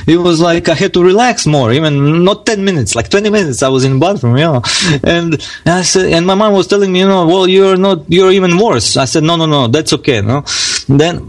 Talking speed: 260 wpm